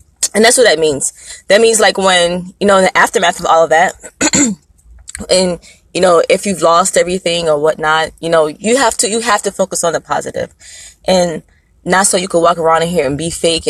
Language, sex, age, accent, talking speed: English, female, 20-39, American, 225 wpm